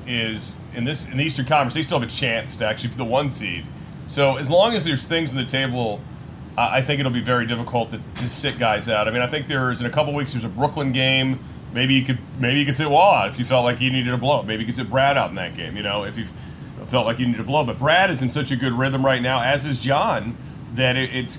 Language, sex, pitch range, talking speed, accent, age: English, male, 115-140 Hz, 285 wpm, American, 30-49